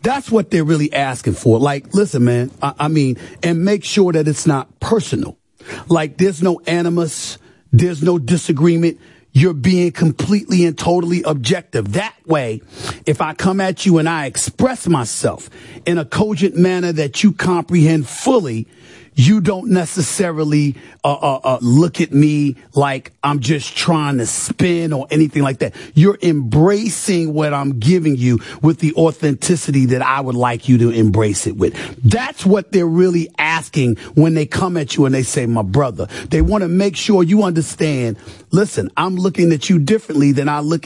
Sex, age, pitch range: male, 40-59, 135-175 Hz